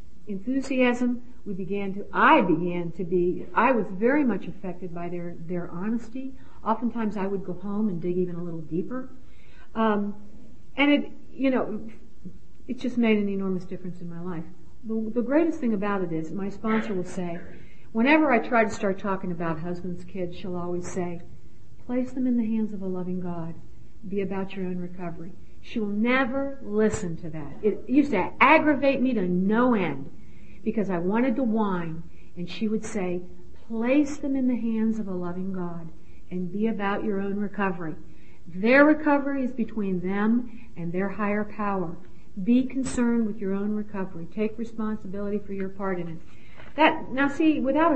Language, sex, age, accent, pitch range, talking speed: English, female, 60-79, American, 180-235 Hz, 180 wpm